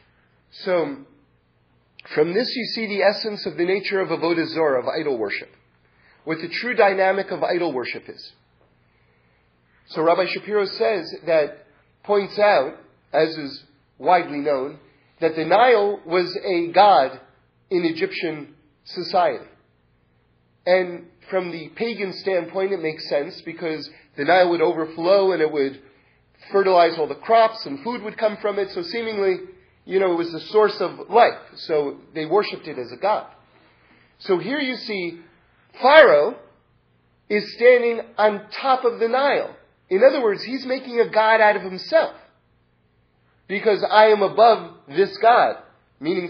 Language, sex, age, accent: English, male, 40-59, American